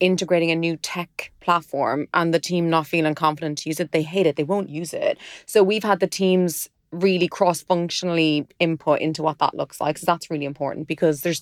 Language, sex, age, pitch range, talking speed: English, female, 20-39, 155-185 Hz, 210 wpm